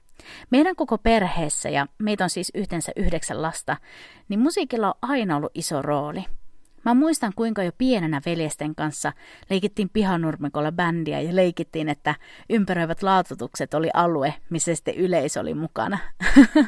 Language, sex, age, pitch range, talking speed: Finnish, female, 30-49, 160-240 Hz, 140 wpm